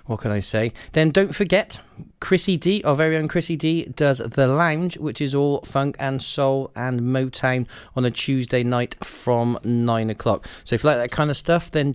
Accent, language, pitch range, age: British, English, 115-155 Hz, 30-49